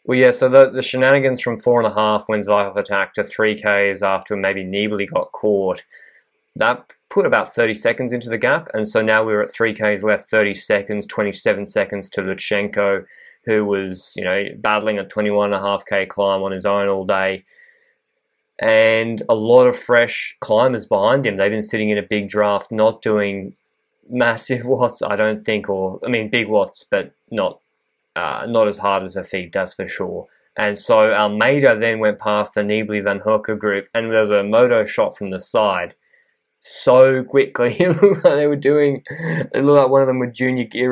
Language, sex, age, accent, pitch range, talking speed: English, male, 20-39, Australian, 105-135 Hz, 190 wpm